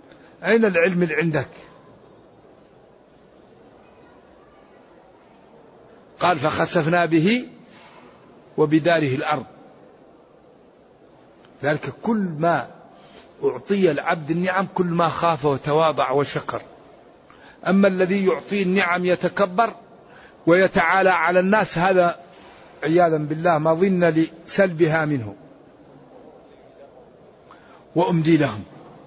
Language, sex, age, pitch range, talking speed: Arabic, male, 50-69, 165-210 Hz, 75 wpm